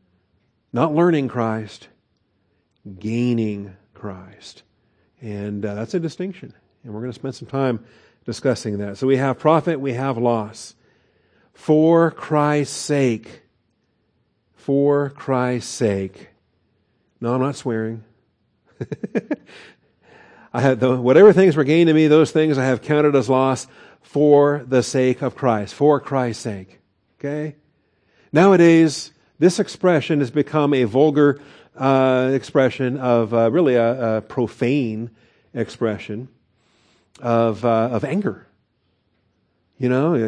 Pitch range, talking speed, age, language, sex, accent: 110-145 Hz, 125 wpm, 50-69, English, male, American